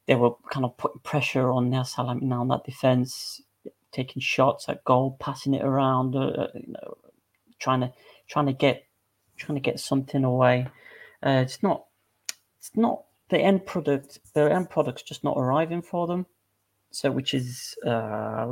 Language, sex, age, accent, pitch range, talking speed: English, male, 30-49, British, 120-145 Hz, 175 wpm